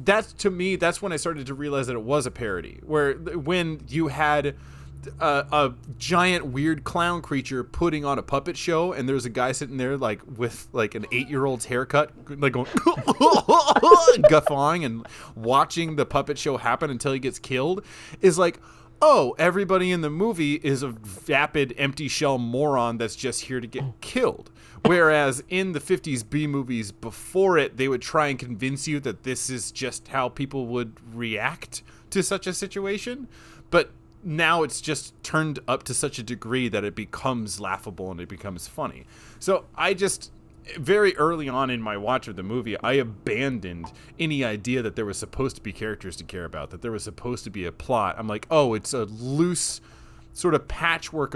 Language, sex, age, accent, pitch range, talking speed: English, male, 20-39, American, 120-155 Hz, 190 wpm